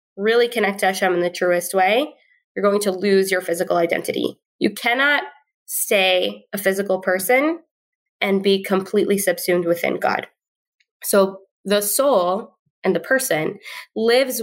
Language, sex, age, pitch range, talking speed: English, female, 20-39, 185-225 Hz, 140 wpm